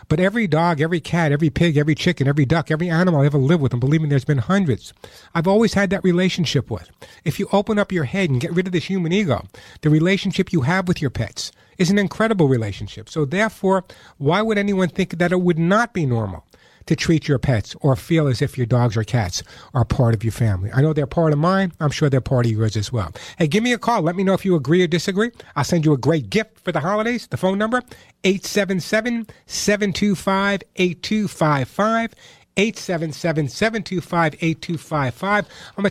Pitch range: 135-190 Hz